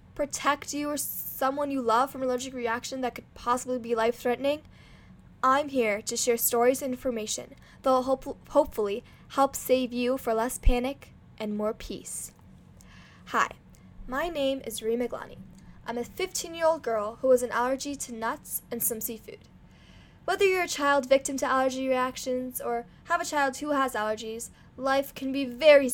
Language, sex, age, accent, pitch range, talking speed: English, female, 10-29, American, 235-280 Hz, 175 wpm